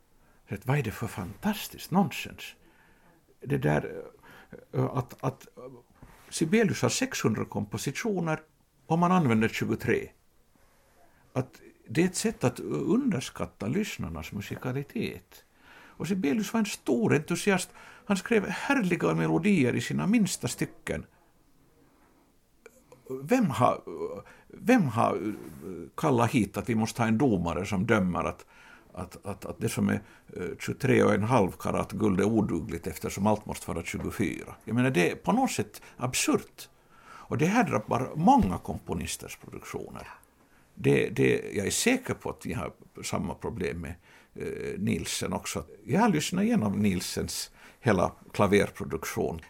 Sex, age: male, 60-79